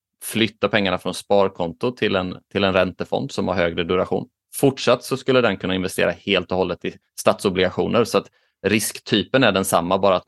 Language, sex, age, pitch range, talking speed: Swedish, male, 20-39, 90-105 Hz, 185 wpm